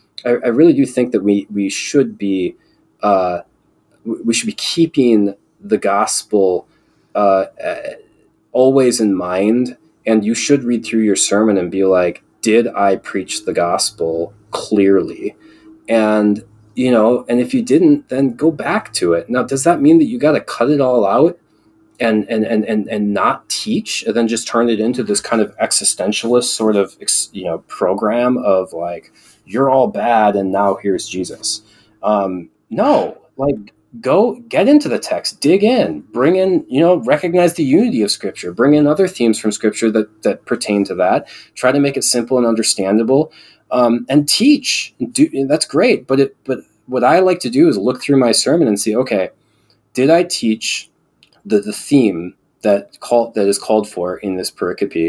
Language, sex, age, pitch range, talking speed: English, male, 20-39, 100-135 Hz, 180 wpm